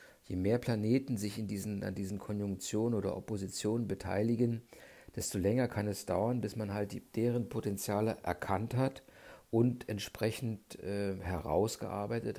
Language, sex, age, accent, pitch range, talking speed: German, male, 50-69, German, 100-115 Hz, 135 wpm